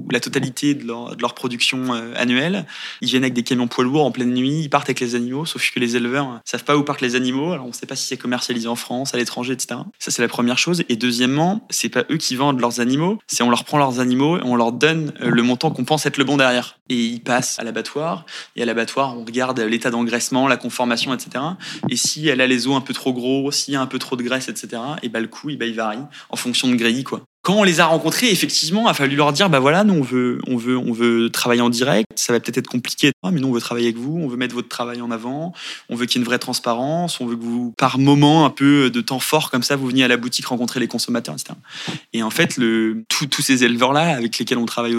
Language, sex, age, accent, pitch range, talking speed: French, male, 20-39, French, 120-145 Hz, 285 wpm